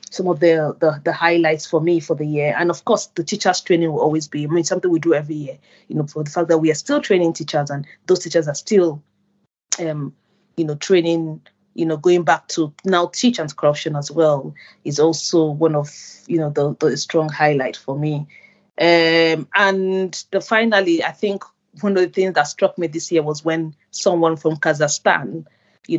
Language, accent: English, Nigerian